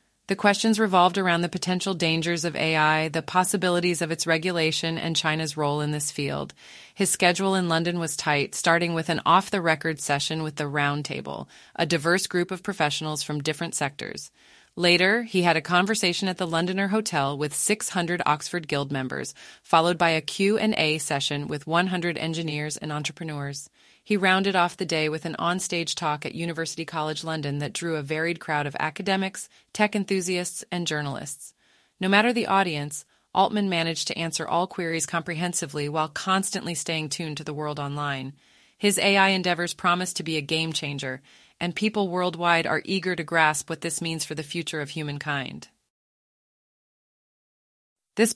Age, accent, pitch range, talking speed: 30-49, American, 155-180 Hz, 165 wpm